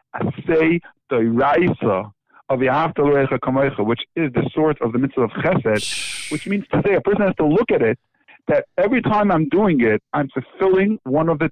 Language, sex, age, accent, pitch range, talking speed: English, male, 60-79, American, 140-195 Hz, 205 wpm